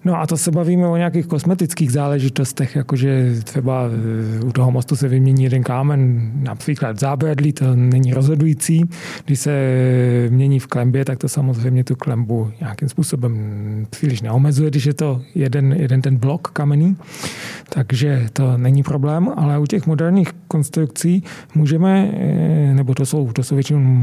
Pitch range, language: 135-160 Hz, Czech